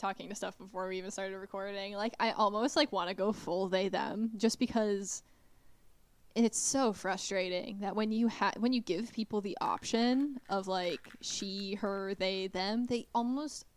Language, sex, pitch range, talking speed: English, female, 195-230 Hz, 185 wpm